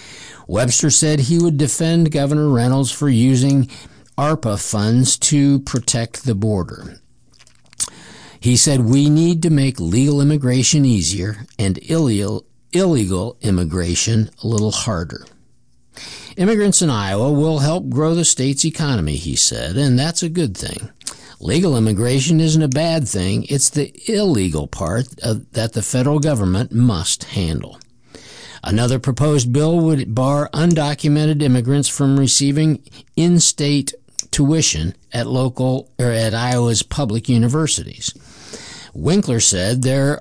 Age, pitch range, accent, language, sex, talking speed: 60-79, 115-150 Hz, American, English, male, 125 wpm